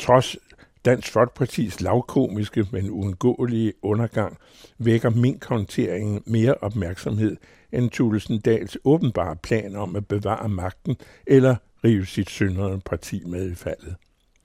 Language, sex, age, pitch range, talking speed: Danish, male, 60-79, 95-120 Hz, 115 wpm